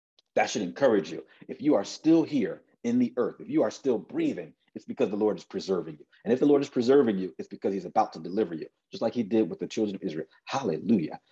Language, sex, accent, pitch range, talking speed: English, male, American, 105-155 Hz, 255 wpm